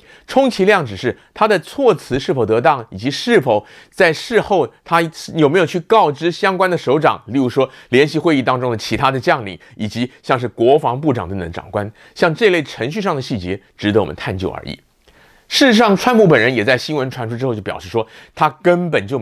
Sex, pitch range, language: male, 115-180 Hz, Chinese